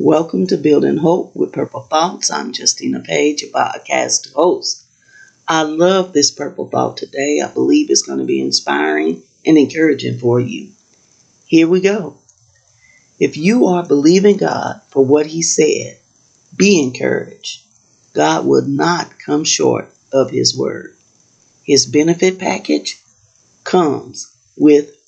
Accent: American